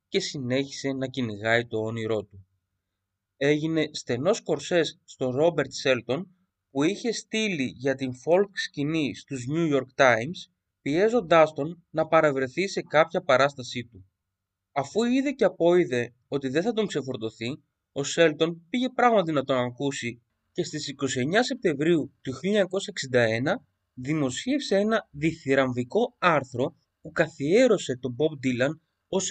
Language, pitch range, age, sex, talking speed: Greek, 125-170 Hz, 30-49, male, 130 wpm